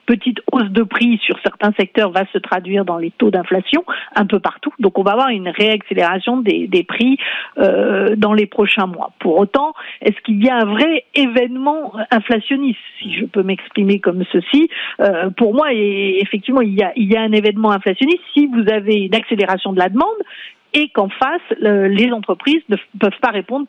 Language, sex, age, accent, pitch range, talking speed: French, female, 50-69, French, 190-240 Hz, 195 wpm